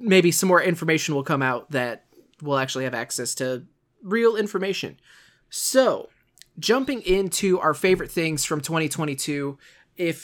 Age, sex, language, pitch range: 20-39, male, English, 145-185 Hz